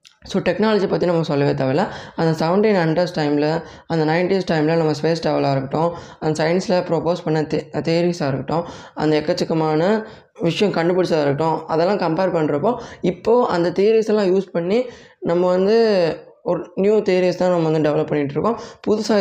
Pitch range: 155-190 Hz